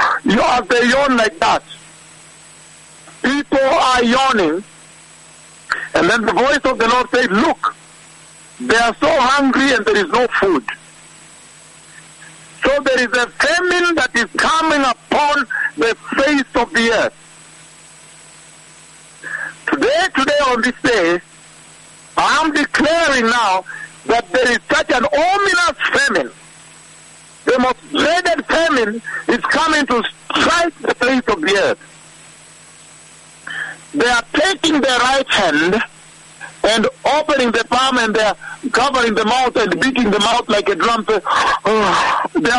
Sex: male